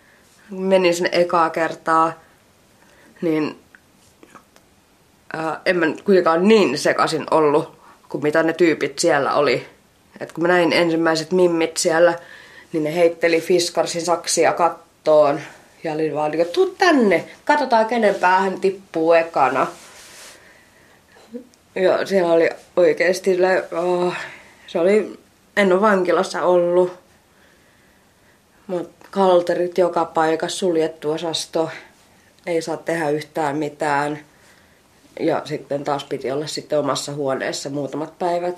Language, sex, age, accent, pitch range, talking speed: Finnish, female, 20-39, native, 155-180 Hz, 110 wpm